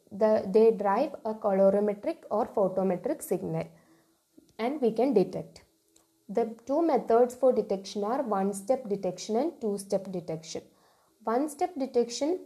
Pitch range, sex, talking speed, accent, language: 195-250 Hz, female, 135 wpm, Indian, English